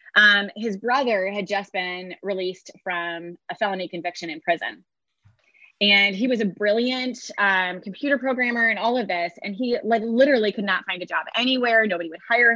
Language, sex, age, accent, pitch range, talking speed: English, female, 20-39, American, 185-245 Hz, 180 wpm